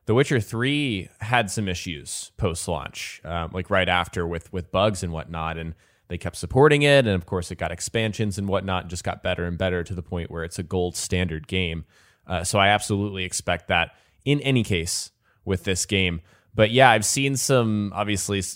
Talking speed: 205 wpm